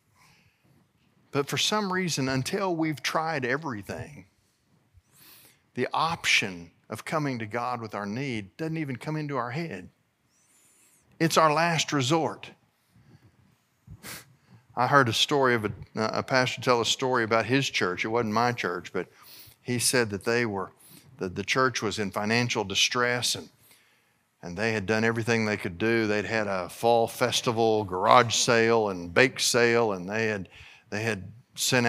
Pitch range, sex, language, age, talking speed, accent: 110-130 Hz, male, English, 50-69, 155 wpm, American